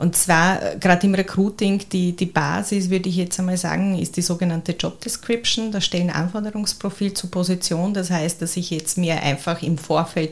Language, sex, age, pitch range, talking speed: German, female, 30-49, 155-180 Hz, 185 wpm